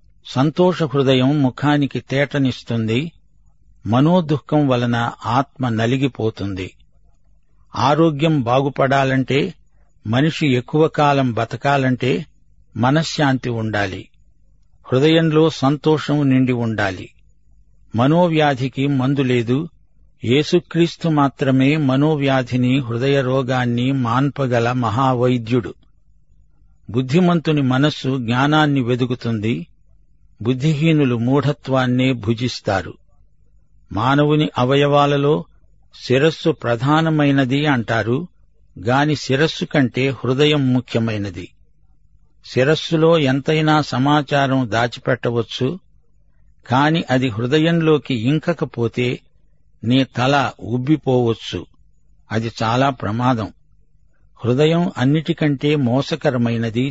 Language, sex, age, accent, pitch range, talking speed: Telugu, male, 50-69, native, 120-150 Hz, 65 wpm